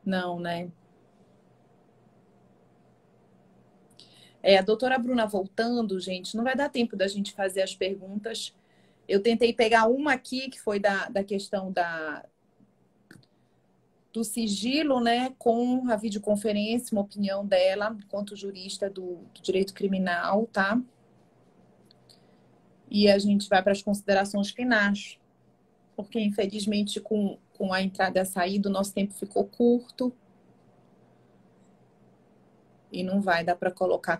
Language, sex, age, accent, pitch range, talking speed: Portuguese, female, 30-49, Brazilian, 175-210 Hz, 125 wpm